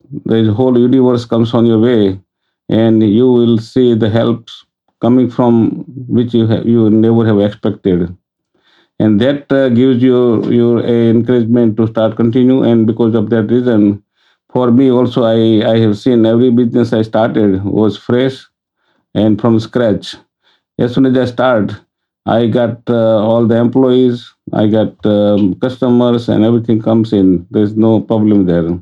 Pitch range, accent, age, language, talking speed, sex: 110-125 Hz, Indian, 50-69, English, 160 wpm, male